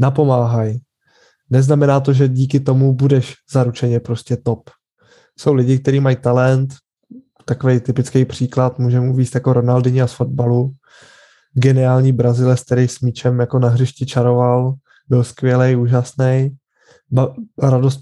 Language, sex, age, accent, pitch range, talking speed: Czech, male, 20-39, native, 125-135 Hz, 125 wpm